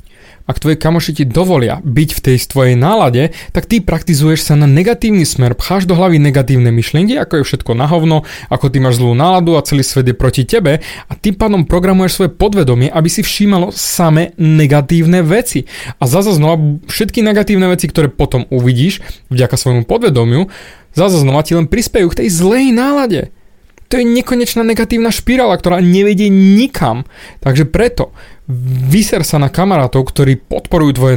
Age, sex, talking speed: 20-39, male, 165 wpm